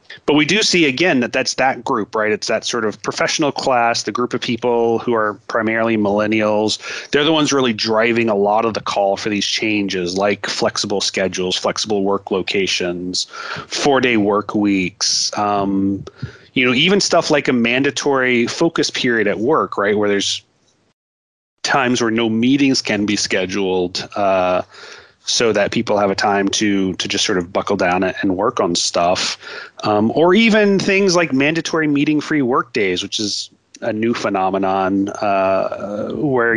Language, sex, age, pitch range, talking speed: English, male, 30-49, 100-125 Hz, 165 wpm